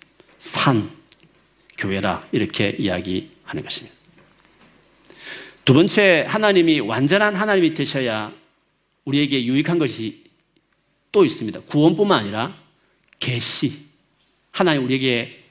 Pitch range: 125-175 Hz